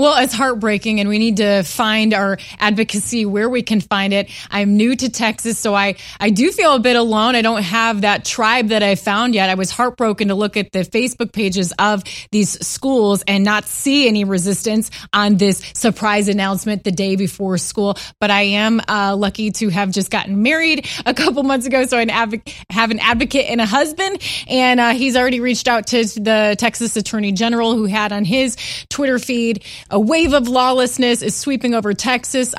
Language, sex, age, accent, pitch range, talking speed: English, female, 20-39, American, 205-245 Hz, 200 wpm